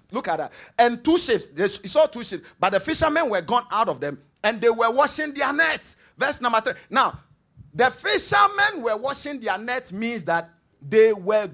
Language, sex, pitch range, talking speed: English, male, 175-230 Hz, 200 wpm